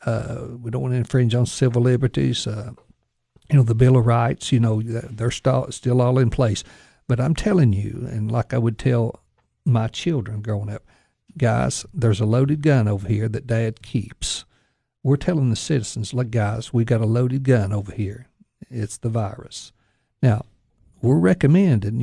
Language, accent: English, American